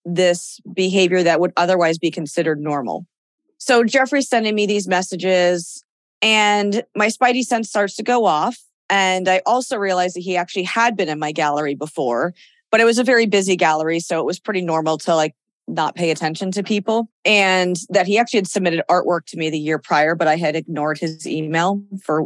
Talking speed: 195 wpm